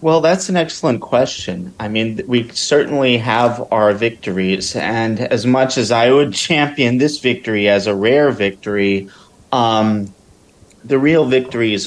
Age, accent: 30-49, American